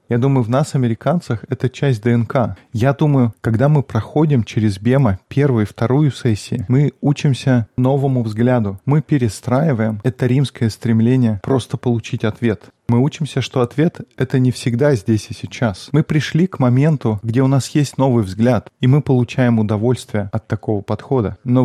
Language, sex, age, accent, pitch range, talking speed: Russian, male, 20-39, native, 115-140 Hz, 165 wpm